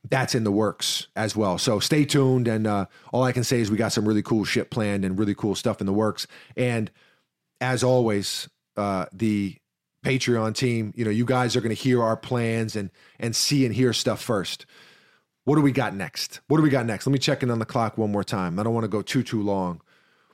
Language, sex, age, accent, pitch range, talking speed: English, male, 30-49, American, 110-135 Hz, 240 wpm